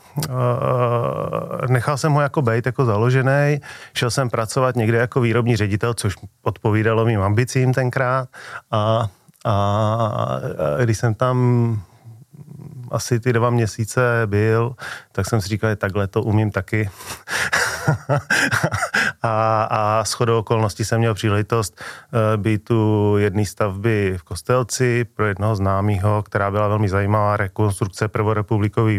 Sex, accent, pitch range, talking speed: male, native, 95-115 Hz, 130 wpm